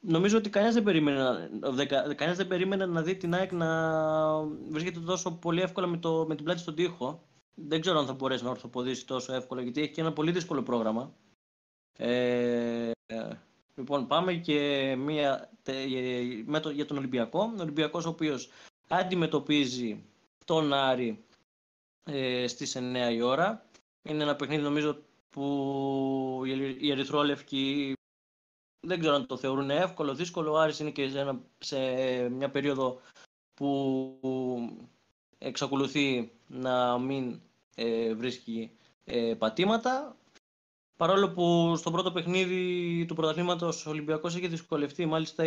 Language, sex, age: Greek, male, 20-39